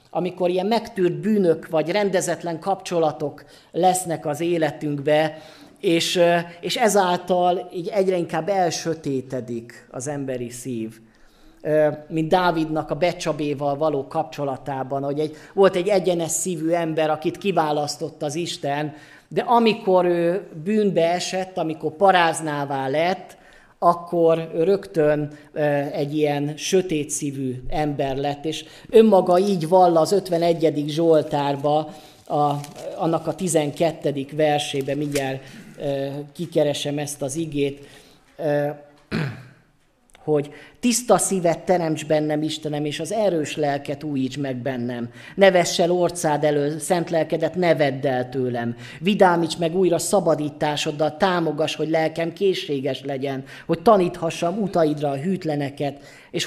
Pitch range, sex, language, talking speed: 145-175 Hz, male, Hungarian, 110 wpm